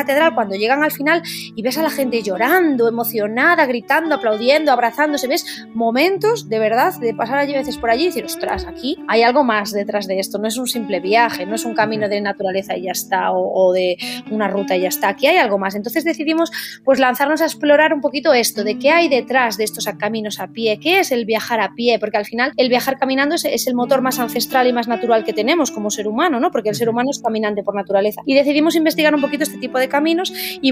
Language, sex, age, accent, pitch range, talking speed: Spanish, female, 20-39, Spanish, 220-280 Hz, 240 wpm